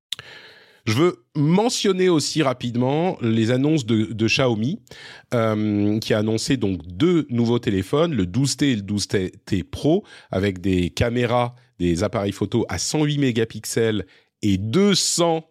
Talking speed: 135 wpm